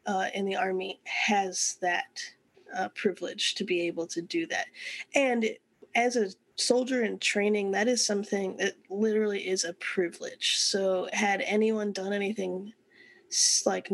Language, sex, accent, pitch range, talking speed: English, female, American, 195-230 Hz, 145 wpm